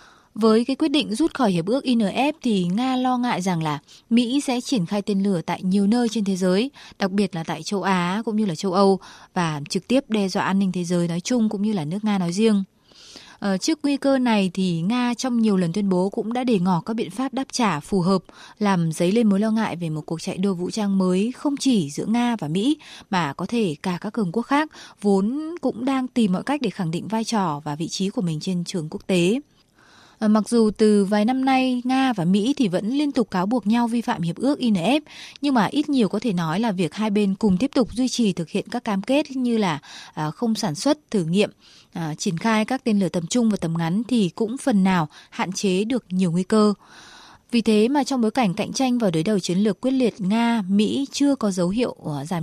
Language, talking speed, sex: Vietnamese, 245 wpm, female